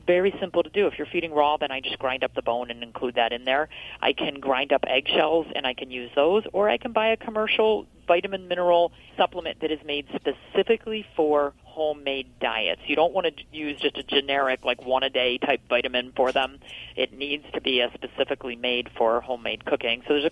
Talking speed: 215 wpm